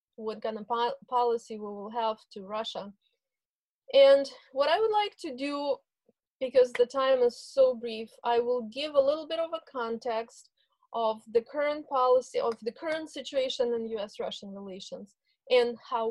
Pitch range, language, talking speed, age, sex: 230-295 Hz, English, 165 wpm, 20-39, female